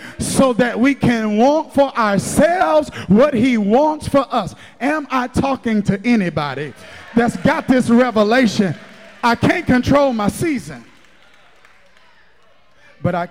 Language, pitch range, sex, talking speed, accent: English, 175-250 Hz, male, 125 wpm, American